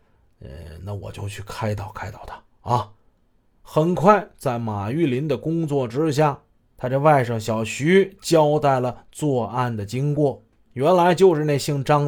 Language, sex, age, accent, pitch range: Chinese, male, 30-49, native, 120-165 Hz